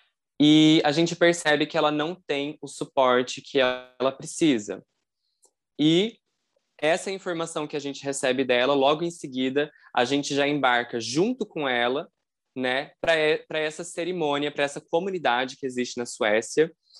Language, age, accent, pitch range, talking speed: Portuguese, 20-39, Brazilian, 125-155 Hz, 150 wpm